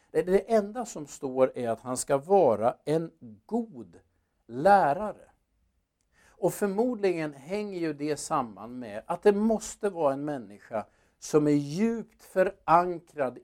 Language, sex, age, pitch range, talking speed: Swedish, male, 50-69, 125-180 Hz, 130 wpm